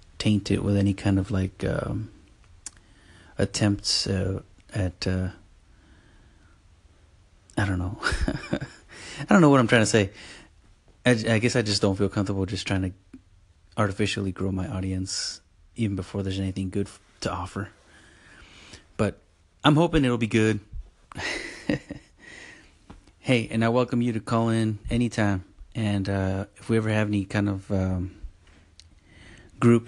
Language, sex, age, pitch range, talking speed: English, male, 30-49, 90-105 Hz, 145 wpm